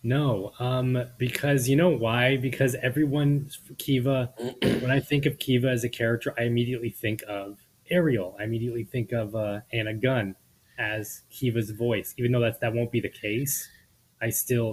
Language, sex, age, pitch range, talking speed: English, male, 20-39, 100-125 Hz, 170 wpm